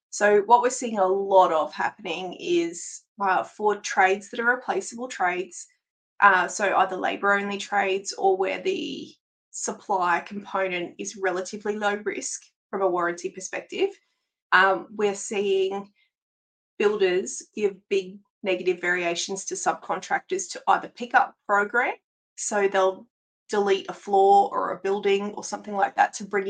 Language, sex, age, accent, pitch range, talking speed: English, female, 20-39, Australian, 195-270 Hz, 140 wpm